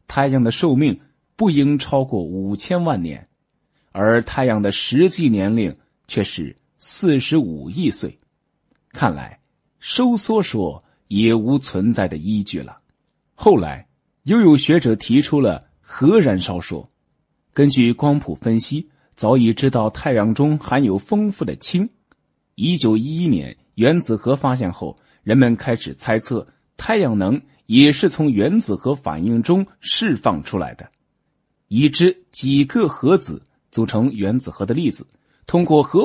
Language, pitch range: Chinese, 110-160 Hz